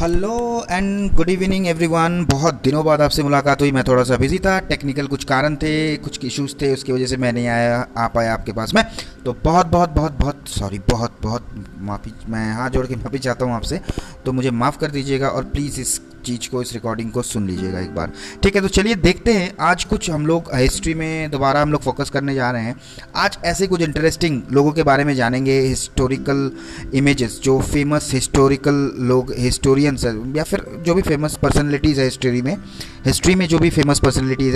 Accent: native